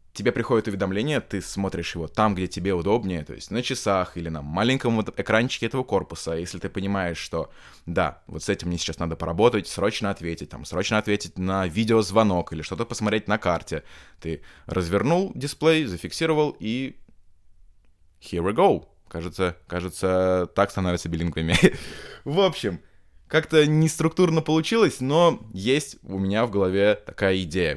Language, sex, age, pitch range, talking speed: Russian, male, 20-39, 90-115 Hz, 155 wpm